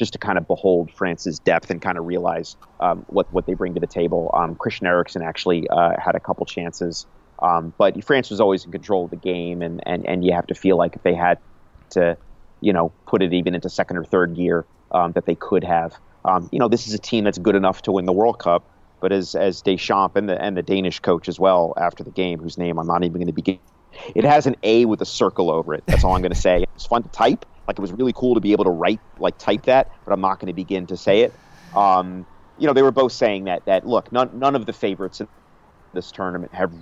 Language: English